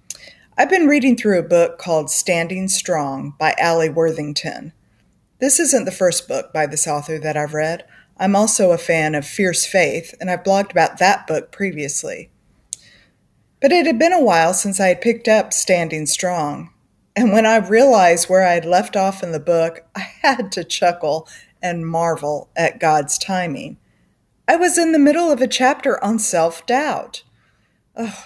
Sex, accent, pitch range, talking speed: female, American, 160-215 Hz, 175 wpm